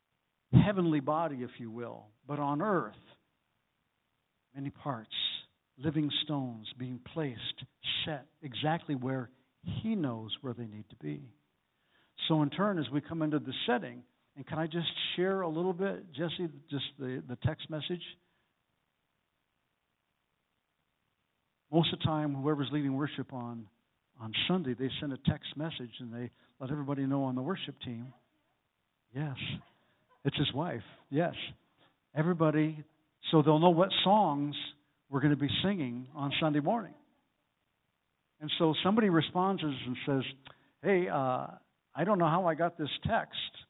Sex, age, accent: male, 60-79, American